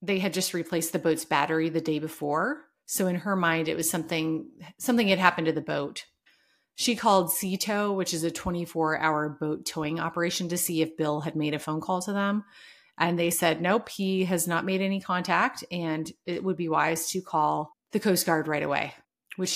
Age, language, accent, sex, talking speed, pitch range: 30-49, English, American, female, 205 wpm, 160-200 Hz